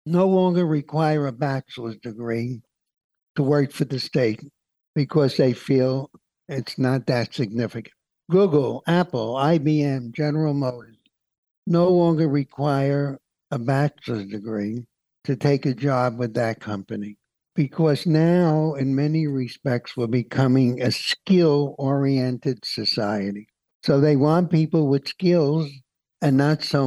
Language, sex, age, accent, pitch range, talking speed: English, male, 60-79, American, 125-155 Hz, 125 wpm